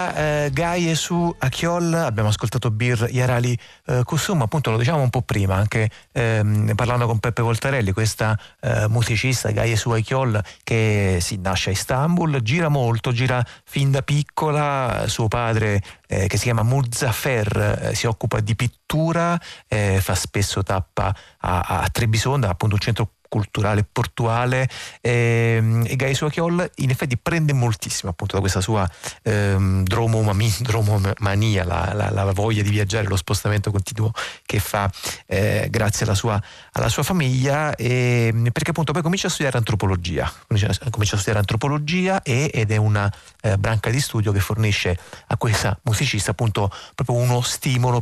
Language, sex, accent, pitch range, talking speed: Italian, male, native, 105-130 Hz, 155 wpm